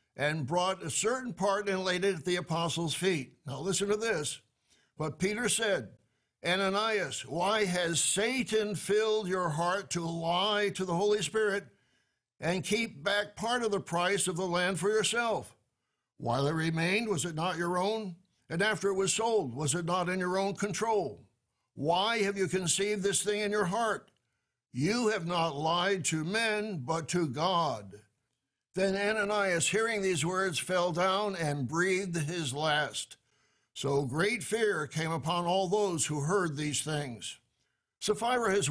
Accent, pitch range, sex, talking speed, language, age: American, 155-200 Hz, male, 165 wpm, English, 60-79